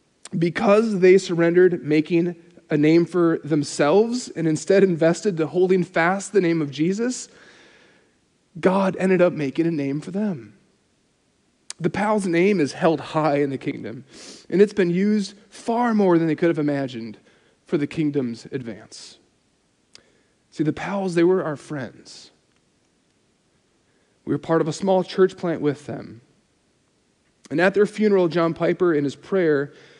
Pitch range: 150-185 Hz